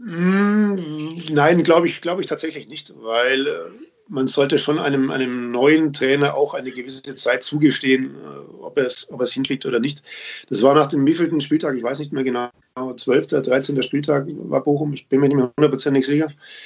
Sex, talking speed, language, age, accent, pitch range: male, 190 wpm, German, 40-59, German, 130-155 Hz